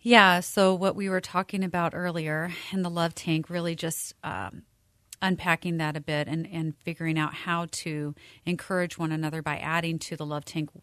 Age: 30-49